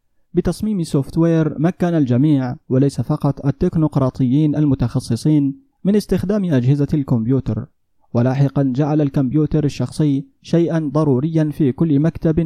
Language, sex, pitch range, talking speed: Arabic, male, 130-160 Hz, 100 wpm